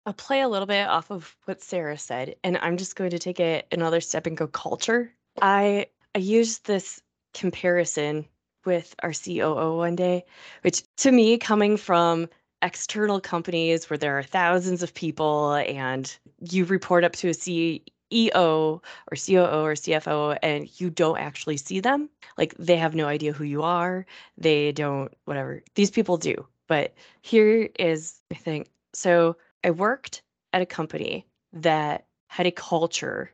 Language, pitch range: English, 155-190 Hz